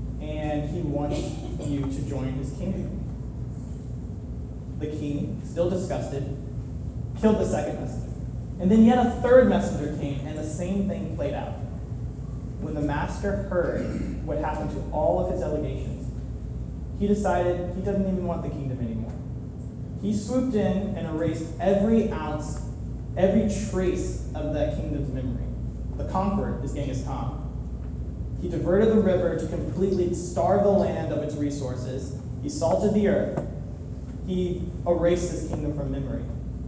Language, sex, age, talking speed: English, male, 30-49, 145 wpm